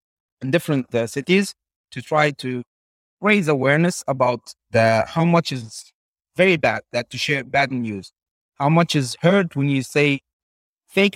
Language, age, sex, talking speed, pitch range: English, 30-49, male, 155 wpm, 125-160 Hz